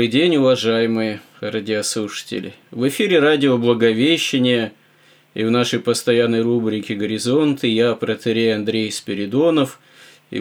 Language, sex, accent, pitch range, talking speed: Russian, male, native, 105-125 Hz, 100 wpm